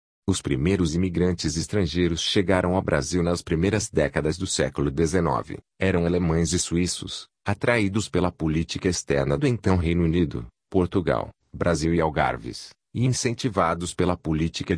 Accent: Brazilian